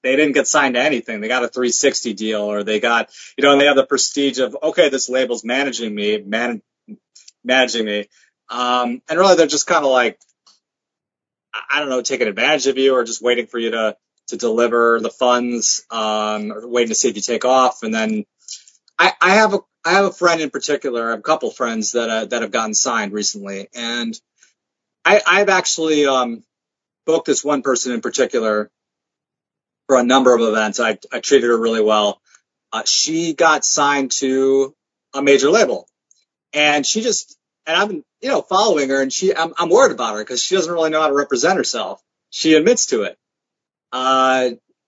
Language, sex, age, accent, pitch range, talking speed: English, male, 30-49, American, 115-155 Hz, 200 wpm